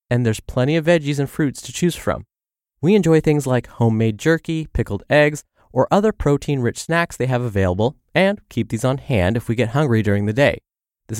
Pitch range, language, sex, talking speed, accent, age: 110-155 Hz, English, male, 205 wpm, American, 20-39